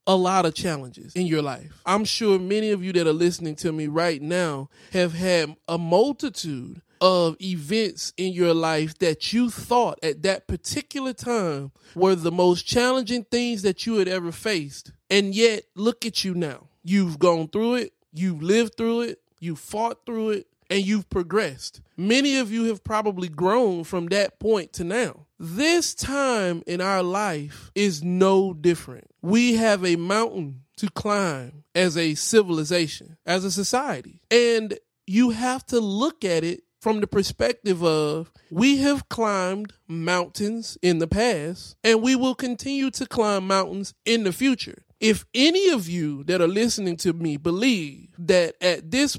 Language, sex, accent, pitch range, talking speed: English, male, American, 175-235 Hz, 170 wpm